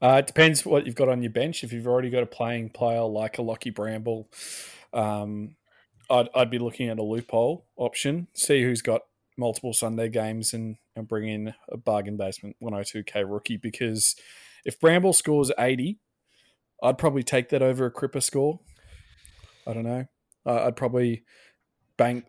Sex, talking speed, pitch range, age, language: male, 170 wpm, 110-125 Hz, 20-39, English